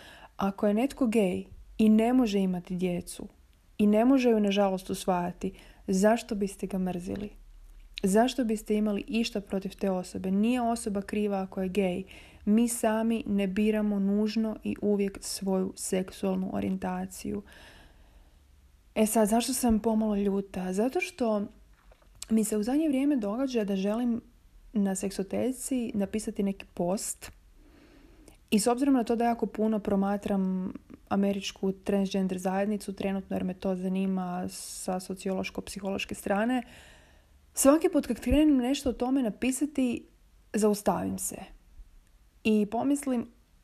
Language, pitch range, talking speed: Croatian, 190-230 Hz, 130 wpm